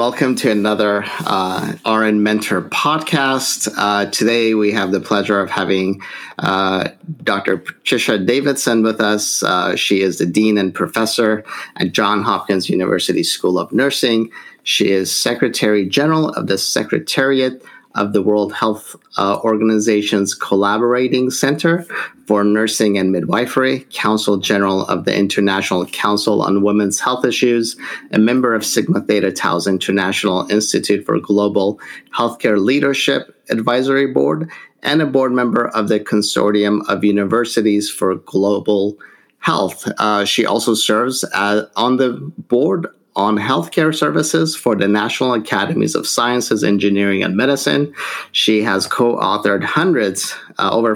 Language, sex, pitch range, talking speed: English, male, 100-120 Hz, 140 wpm